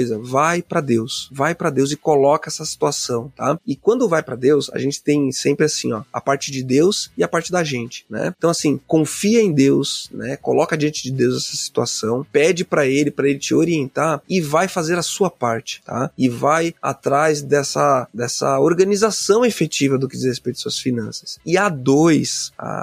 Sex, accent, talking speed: male, Brazilian, 200 wpm